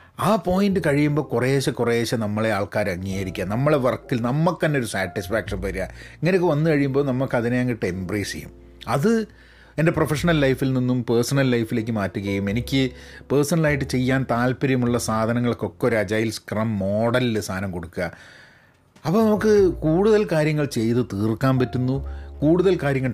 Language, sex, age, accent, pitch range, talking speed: Malayalam, male, 30-49, native, 110-170 Hz, 130 wpm